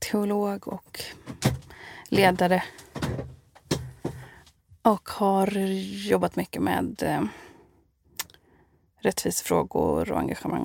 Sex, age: female, 30-49